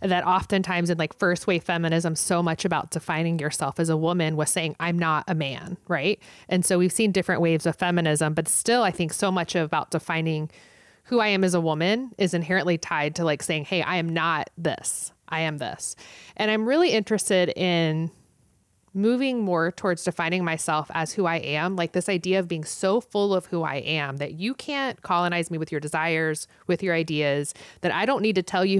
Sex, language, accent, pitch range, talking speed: female, English, American, 160-200 Hz, 210 wpm